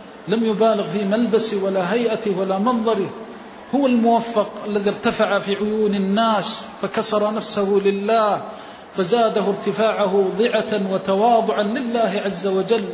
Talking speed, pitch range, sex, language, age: 115 wpm, 195-225 Hz, male, Arabic, 40-59